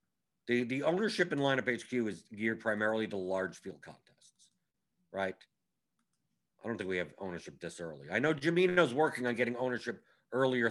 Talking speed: 170 wpm